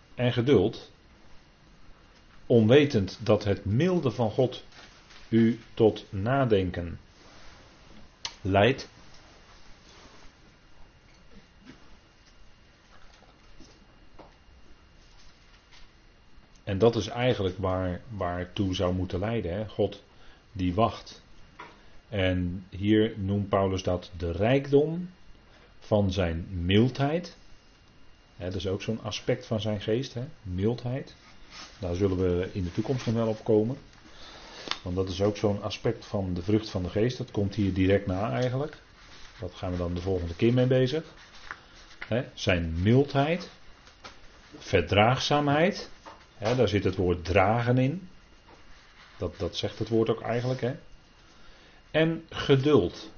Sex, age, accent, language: male, 40-59, Dutch, Dutch